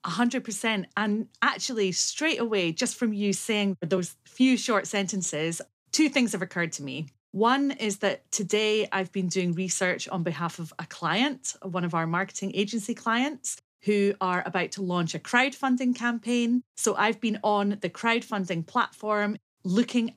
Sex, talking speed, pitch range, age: female, 160 wpm, 175-220 Hz, 30-49